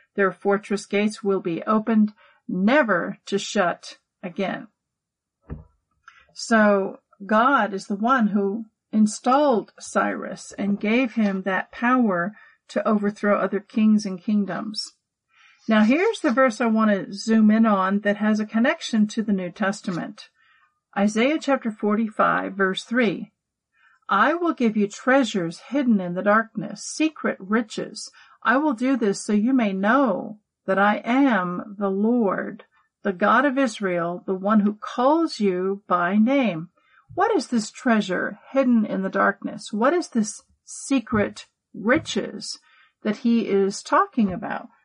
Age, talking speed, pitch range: 50-69, 140 wpm, 195-250 Hz